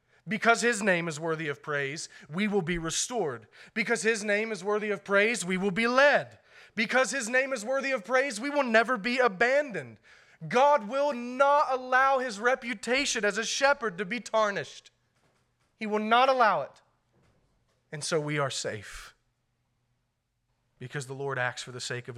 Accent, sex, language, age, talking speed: American, male, English, 30-49, 175 wpm